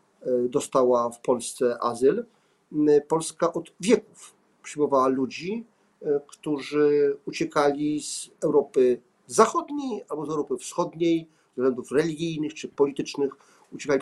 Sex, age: male, 50-69